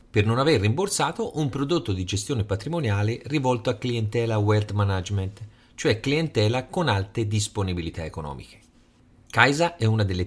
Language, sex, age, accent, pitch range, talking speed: Italian, male, 40-59, native, 100-155 Hz, 140 wpm